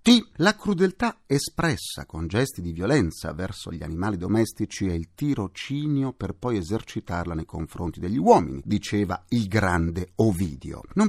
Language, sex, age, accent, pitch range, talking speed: Italian, male, 50-69, native, 95-155 Hz, 140 wpm